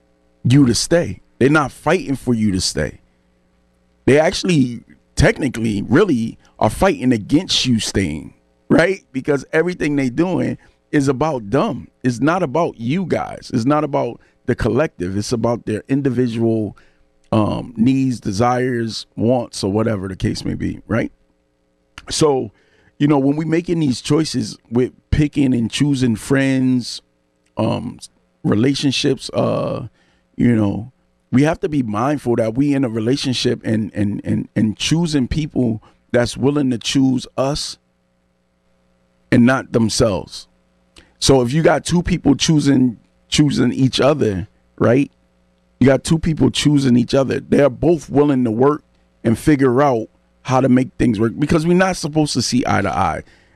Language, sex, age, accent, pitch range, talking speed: English, male, 40-59, American, 90-140 Hz, 150 wpm